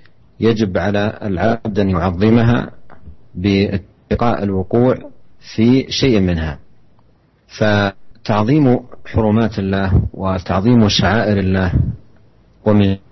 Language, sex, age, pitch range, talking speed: Indonesian, male, 40-59, 95-105 Hz, 80 wpm